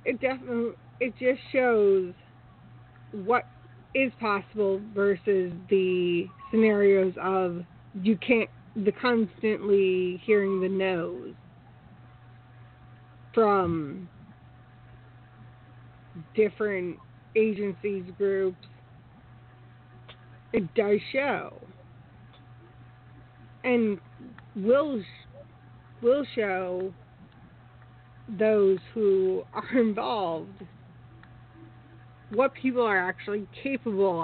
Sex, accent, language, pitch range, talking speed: female, American, English, 125-205 Hz, 70 wpm